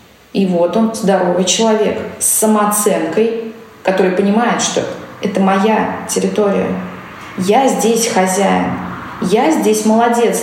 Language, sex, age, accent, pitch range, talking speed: Russian, female, 20-39, native, 185-225 Hz, 110 wpm